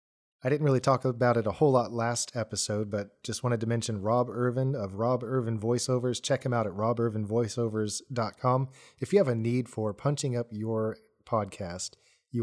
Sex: male